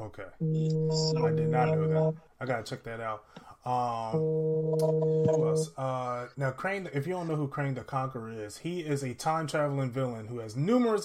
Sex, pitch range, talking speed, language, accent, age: male, 120-155 Hz, 180 wpm, English, American, 20-39